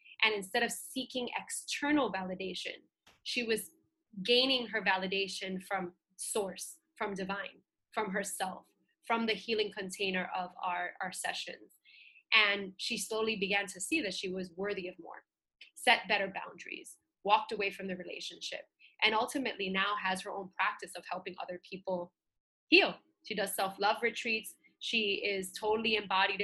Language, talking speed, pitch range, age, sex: English, 150 wpm, 190-220 Hz, 20-39, female